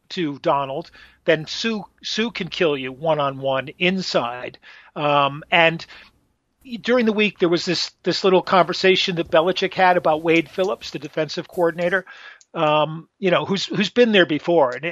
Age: 50-69